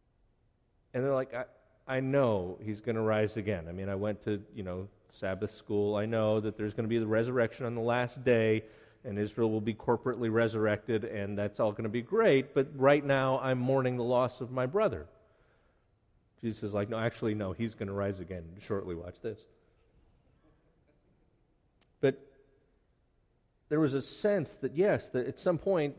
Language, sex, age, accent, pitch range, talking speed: English, male, 40-59, American, 110-135 Hz, 185 wpm